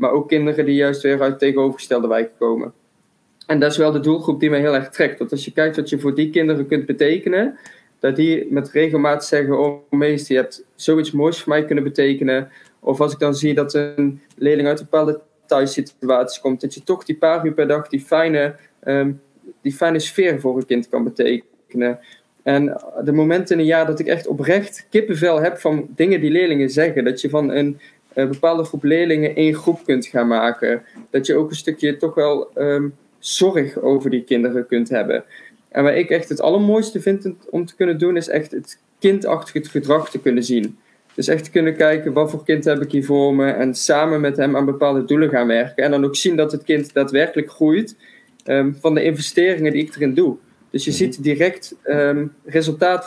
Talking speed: 210 wpm